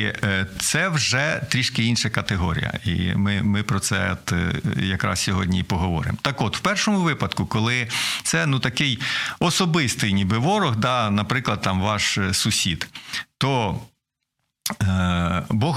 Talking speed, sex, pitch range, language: 125 wpm, male, 105-150 Hz, Ukrainian